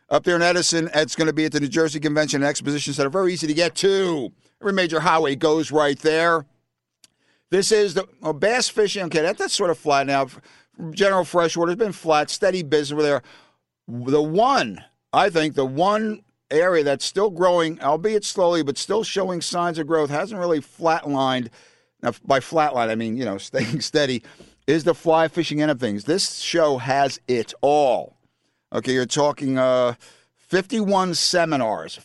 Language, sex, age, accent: English, male, 50-69, American